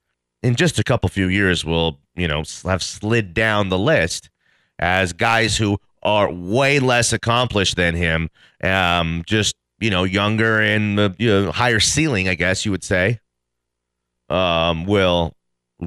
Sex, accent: male, American